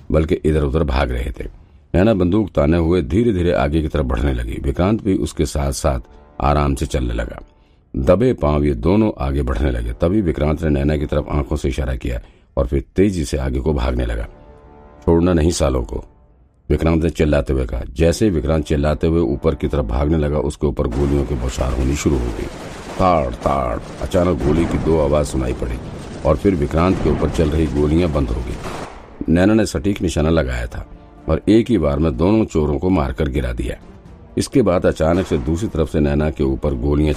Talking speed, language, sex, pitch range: 165 wpm, Hindi, male, 70-85 Hz